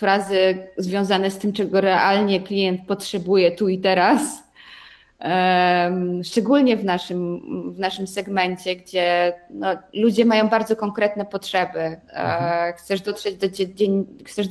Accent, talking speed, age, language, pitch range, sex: native, 95 wpm, 20-39, Polish, 185-205 Hz, female